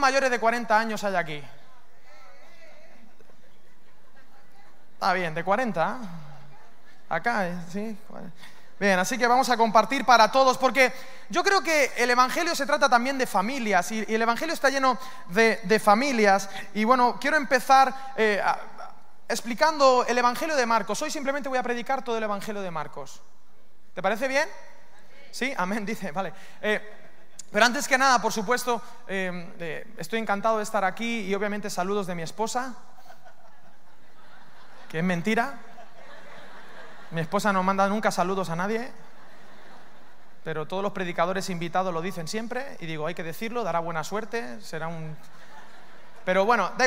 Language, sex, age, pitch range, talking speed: Spanish, male, 20-39, 195-260 Hz, 155 wpm